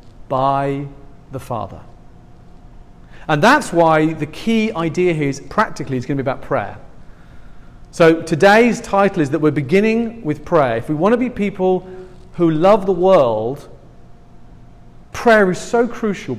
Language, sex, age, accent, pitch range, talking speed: English, male, 40-59, British, 135-190 Hz, 150 wpm